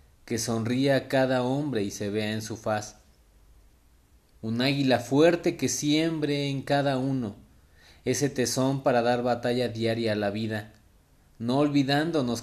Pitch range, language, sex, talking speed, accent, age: 105-135 Hz, Spanish, male, 145 wpm, Mexican, 30-49